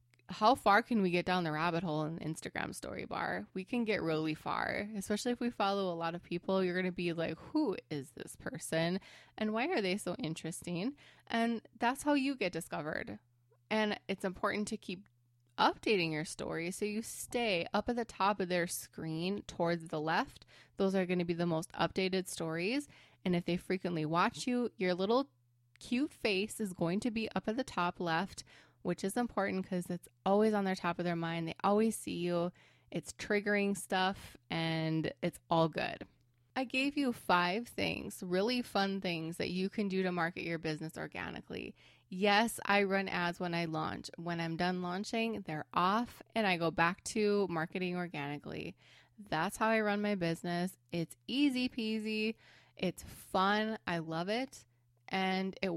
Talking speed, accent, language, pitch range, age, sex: 185 wpm, American, English, 165-210 Hz, 20-39, female